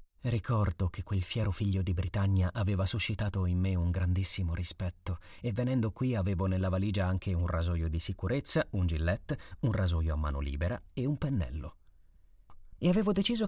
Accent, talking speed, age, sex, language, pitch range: native, 170 wpm, 30-49, male, Italian, 90-110 Hz